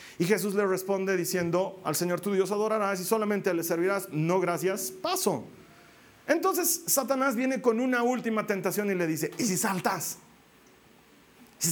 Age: 40-59